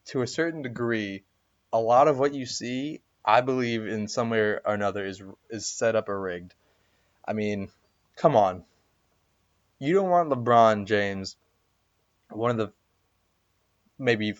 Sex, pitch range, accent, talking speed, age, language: male, 95-110 Hz, American, 150 wpm, 20-39, English